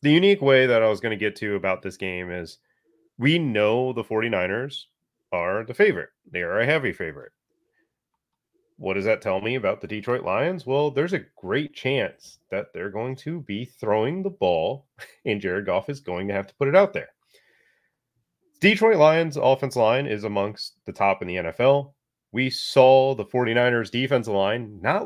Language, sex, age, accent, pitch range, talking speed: English, male, 30-49, American, 105-145 Hz, 185 wpm